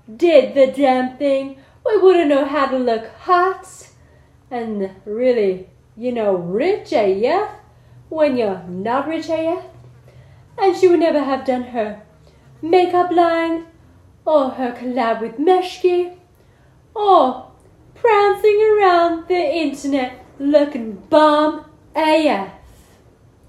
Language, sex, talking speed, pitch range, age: English, female, 110 wpm, 275-360 Hz, 30-49